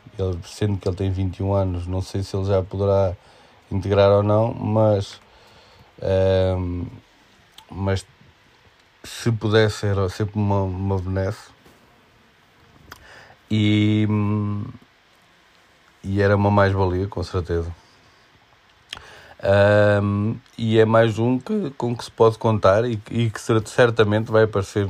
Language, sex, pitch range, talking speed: Portuguese, male, 95-105 Hz, 120 wpm